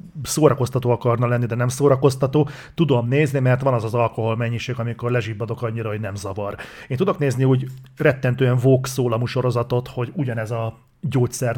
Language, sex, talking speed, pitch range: Hungarian, male, 165 wpm, 120-150 Hz